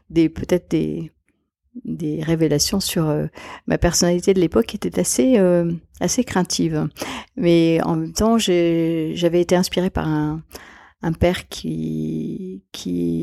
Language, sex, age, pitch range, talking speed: French, female, 40-59, 165-195 Hz, 130 wpm